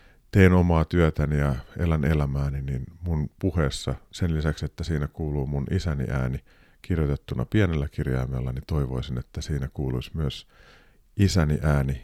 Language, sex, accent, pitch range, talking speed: Finnish, male, native, 70-90 Hz, 140 wpm